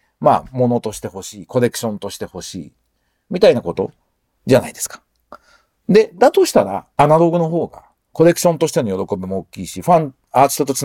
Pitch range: 105-170 Hz